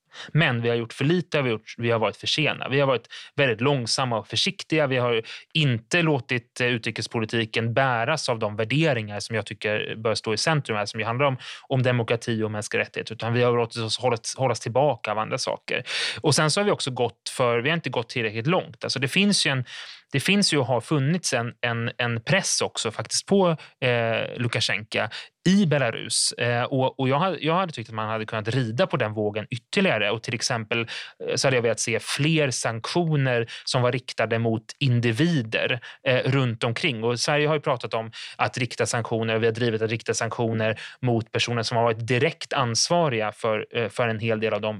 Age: 30-49